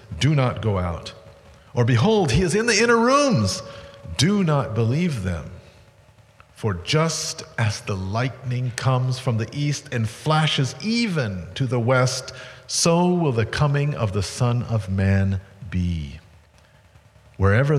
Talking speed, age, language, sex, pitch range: 140 wpm, 50-69, English, male, 105-140 Hz